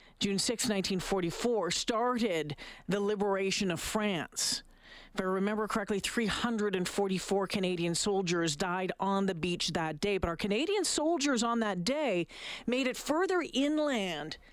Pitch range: 195-240 Hz